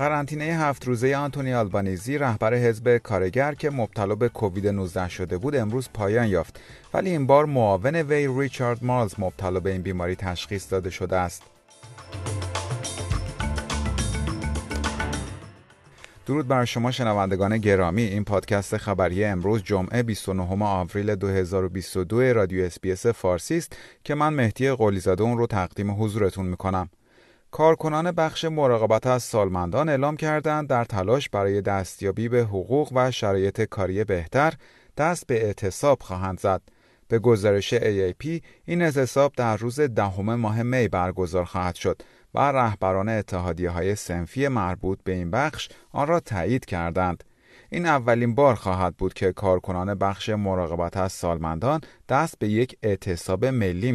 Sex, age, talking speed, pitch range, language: male, 30-49, 140 wpm, 95-125 Hz, Persian